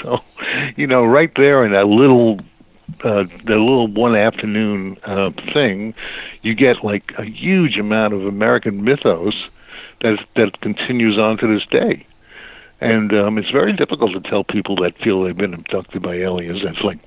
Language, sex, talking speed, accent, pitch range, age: English, male, 170 wpm, American, 100-115 Hz, 60-79